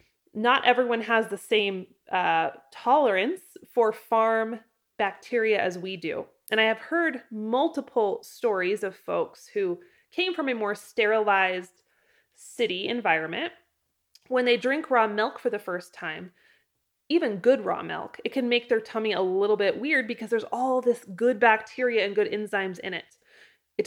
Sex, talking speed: female, 160 wpm